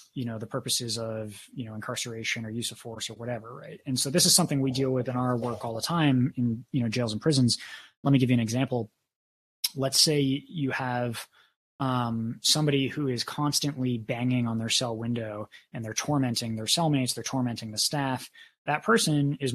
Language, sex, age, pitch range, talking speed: English, male, 20-39, 120-145 Hz, 205 wpm